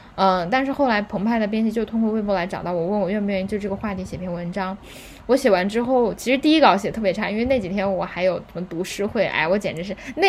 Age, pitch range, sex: 20-39, 180-225 Hz, female